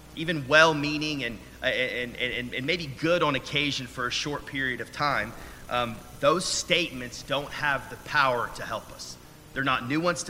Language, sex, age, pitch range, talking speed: English, male, 30-49, 120-155 Hz, 170 wpm